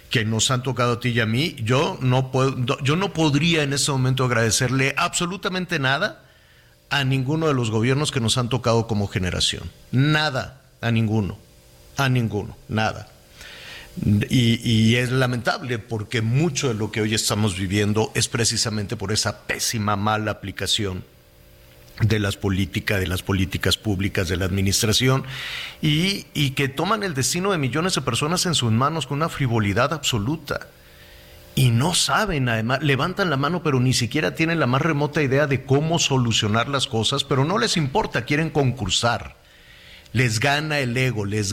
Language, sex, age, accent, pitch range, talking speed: Spanish, male, 50-69, Mexican, 105-140 Hz, 165 wpm